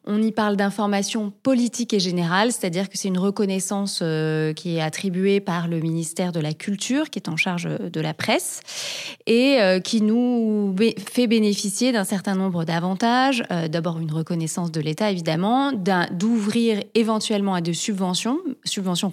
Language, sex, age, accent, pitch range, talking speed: French, female, 30-49, French, 175-225 Hz, 170 wpm